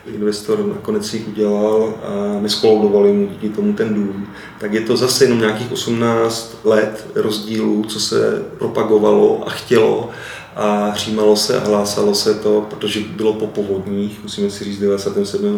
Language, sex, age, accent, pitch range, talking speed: Czech, male, 30-49, native, 105-115 Hz, 155 wpm